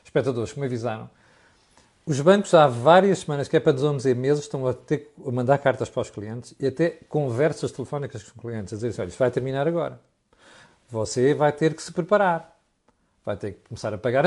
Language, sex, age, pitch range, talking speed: Portuguese, male, 50-69, 125-170 Hz, 200 wpm